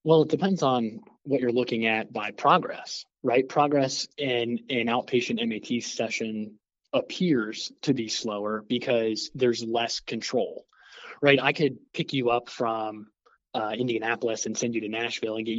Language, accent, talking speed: English, American, 160 wpm